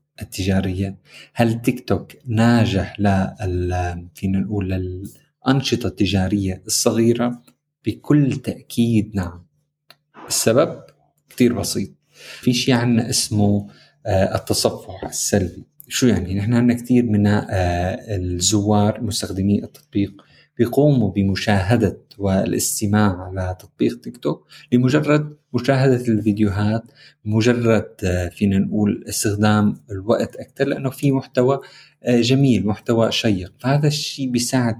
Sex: male